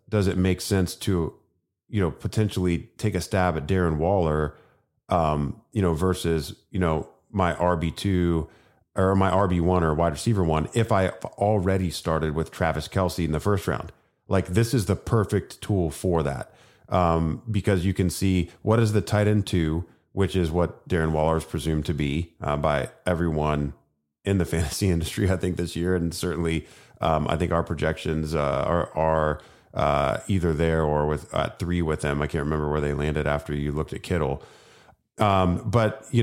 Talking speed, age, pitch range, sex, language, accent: 185 wpm, 30-49, 80-95 Hz, male, English, American